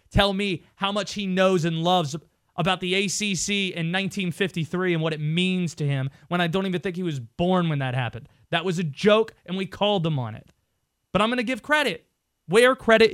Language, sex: English, male